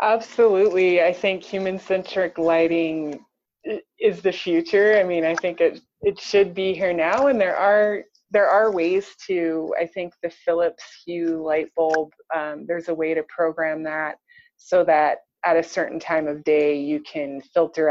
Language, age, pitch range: English, 20-39, 150-180 Hz